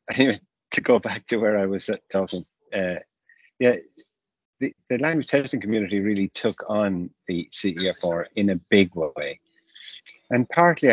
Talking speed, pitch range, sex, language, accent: 155 wpm, 90-110 Hz, male, English, British